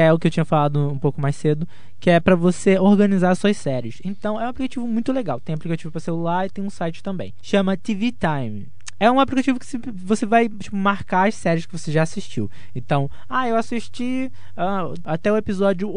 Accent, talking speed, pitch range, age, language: Brazilian, 210 wpm, 140-185 Hz, 20-39, Portuguese